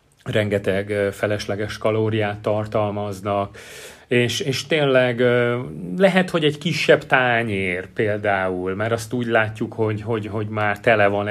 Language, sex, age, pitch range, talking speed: Hungarian, male, 30-49, 100-115 Hz, 120 wpm